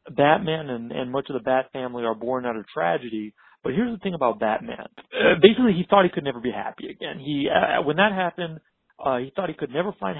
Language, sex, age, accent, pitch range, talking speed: English, male, 40-59, American, 130-175 Hz, 240 wpm